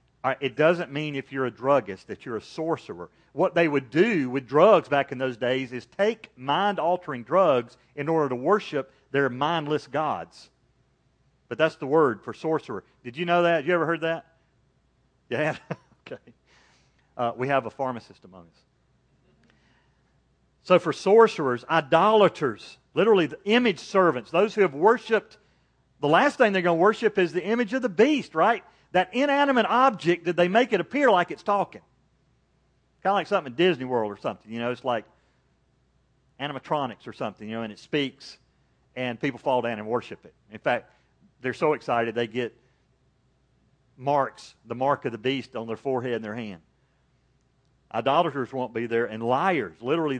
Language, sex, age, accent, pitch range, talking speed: English, male, 40-59, American, 125-175 Hz, 175 wpm